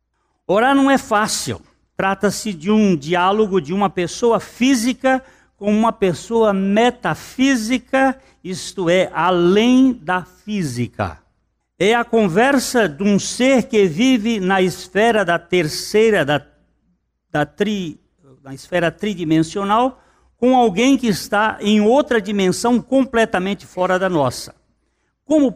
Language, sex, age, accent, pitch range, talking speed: Portuguese, male, 60-79, Brazilian, 160-220 Hz, 120 wpm